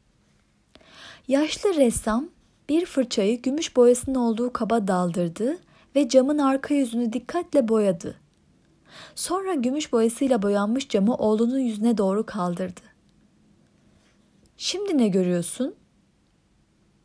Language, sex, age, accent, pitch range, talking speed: Turkish, female, 30-49, native, 190-260 Hz, 95 wpm